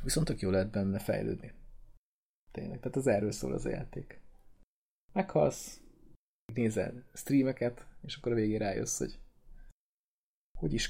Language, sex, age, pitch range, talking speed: Hungarian, male, 20-39, 105-125 Hz, 130 wpm